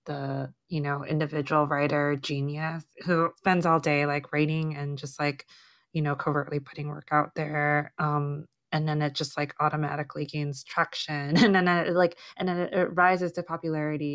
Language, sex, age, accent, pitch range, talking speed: English, female, 20-39, American, 145-165 Hz, 175 wpm